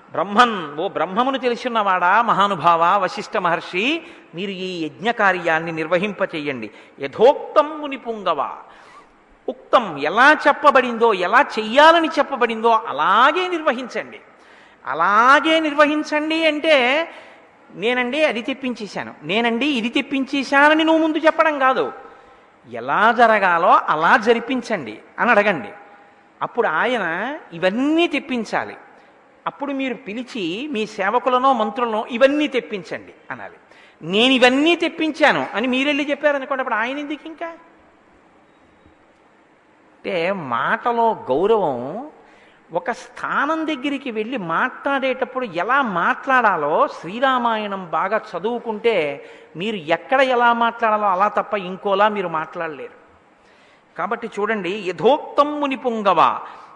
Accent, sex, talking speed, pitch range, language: native, male, 95 wpm, 205-285 Hz, Telugu